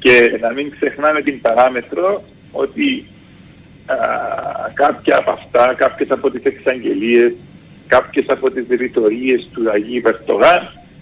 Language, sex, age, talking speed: Greek, male, 50-69, 120 wpm